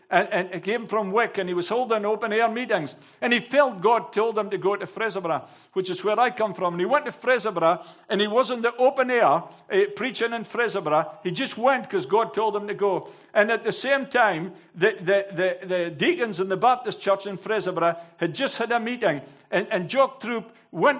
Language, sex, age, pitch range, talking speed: English, male, 60-79, 200-255 Hz, 225 wpm